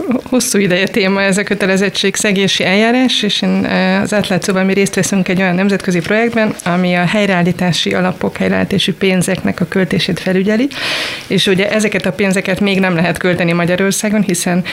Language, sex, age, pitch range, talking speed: Hungarian, female, 30-49, 180-205 Hz, 160 wpm